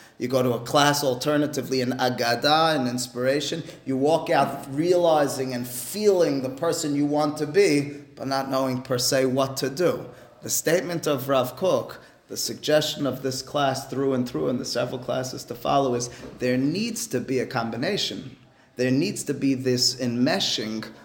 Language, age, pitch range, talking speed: English, 30-49, 130-160 Hz, 175 wpm